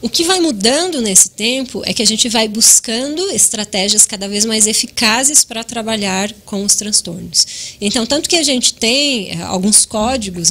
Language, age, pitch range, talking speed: Portuguese, 10-29, 200-265 Hz, 170 wpm